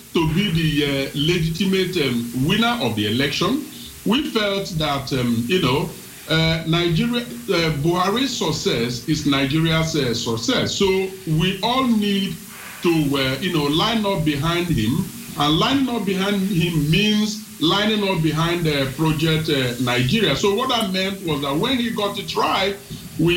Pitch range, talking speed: 140-195 Hz, 160 wpm